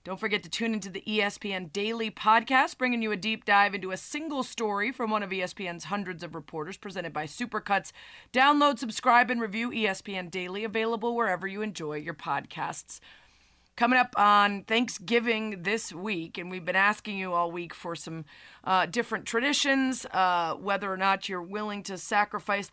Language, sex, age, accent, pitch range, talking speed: English, female, 30-49, American, 185-230 Hz, 175 wpm